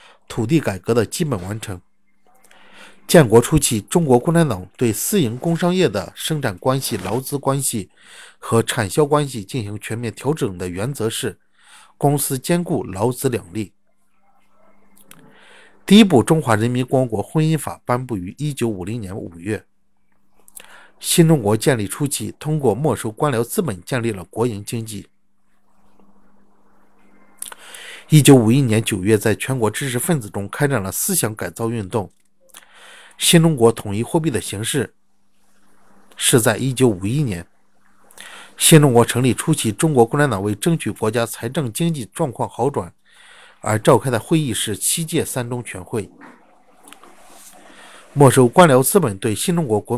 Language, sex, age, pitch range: Chinese, male, 50-69, 110-150 Hz